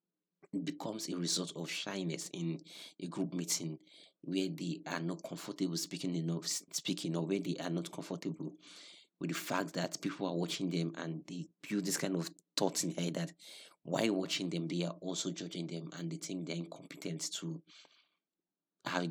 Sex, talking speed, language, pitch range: male, 180 wpm, English, 85-95 Hz